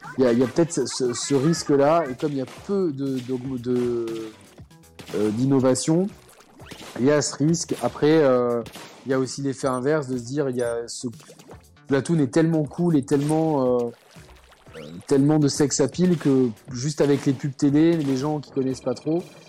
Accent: French